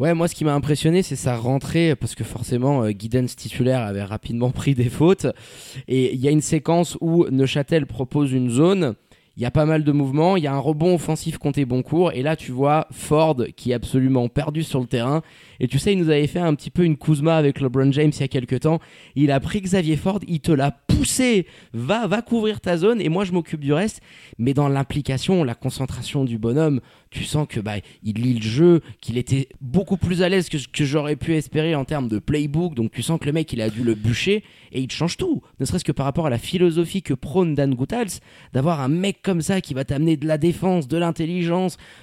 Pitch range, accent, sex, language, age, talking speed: 135-170 Hz, French, male, French, 20-39, 240 wpm